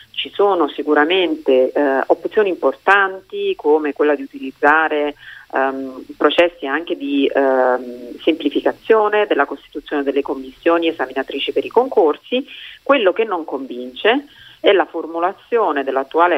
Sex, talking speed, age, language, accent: female, 115 wpm, 40-59, Italian, native